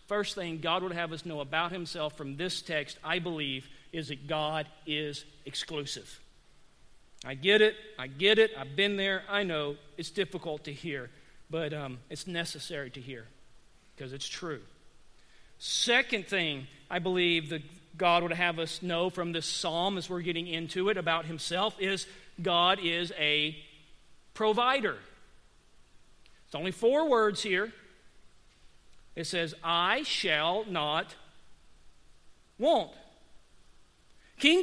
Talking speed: 140 wpm